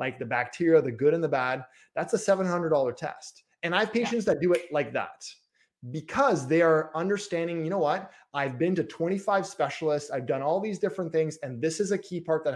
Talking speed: 220 wpm